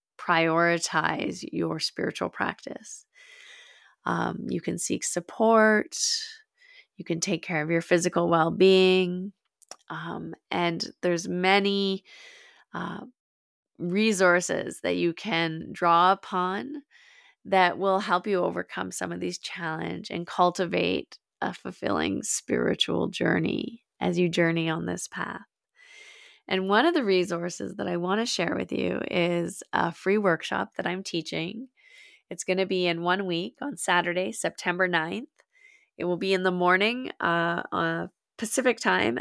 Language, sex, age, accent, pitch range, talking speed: English, female, 30-49, American, 170-230 Hz, 135 wpm